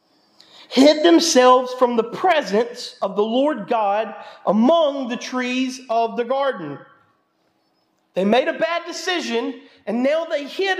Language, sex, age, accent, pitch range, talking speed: English, male, 40-59, American, 245-330 Hz, 135 wpm